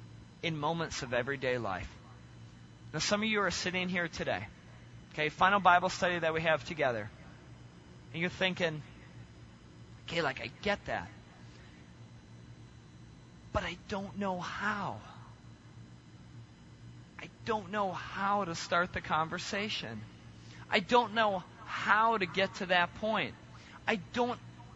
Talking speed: 130 wpm